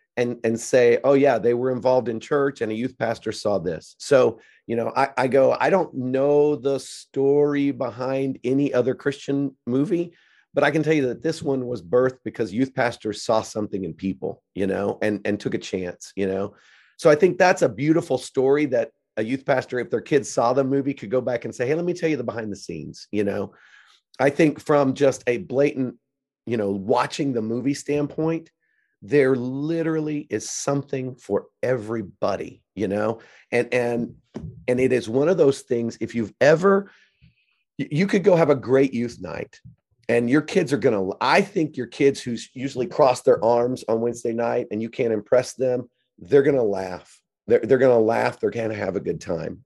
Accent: American